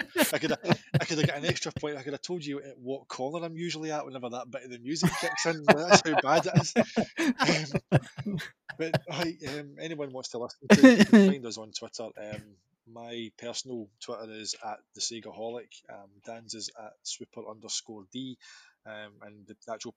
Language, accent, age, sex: English, British, 20-39, male